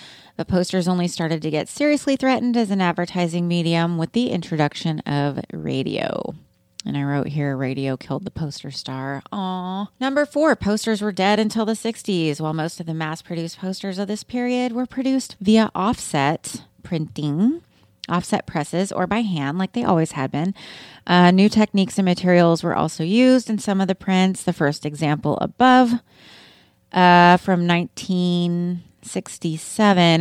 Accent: American